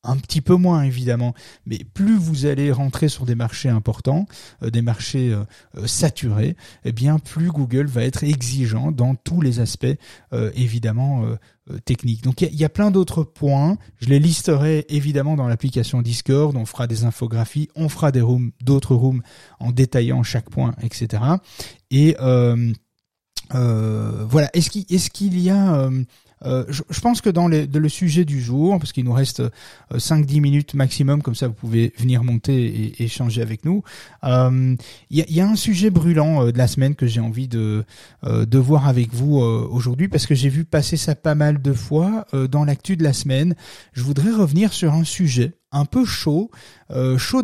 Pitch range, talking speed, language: 120-155 Hz, 180 wpm, French